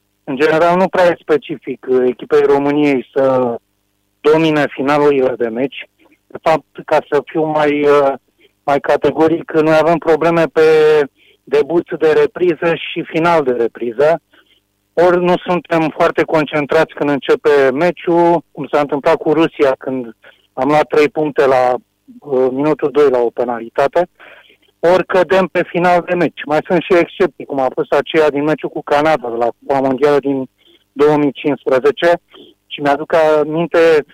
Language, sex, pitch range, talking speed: Romanian, male, 140-175 Hz, 145 wpm